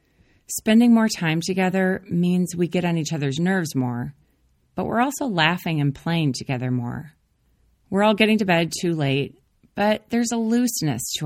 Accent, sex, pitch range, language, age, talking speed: American, female, 140-195 Hz, English, 30-49, 170 wpm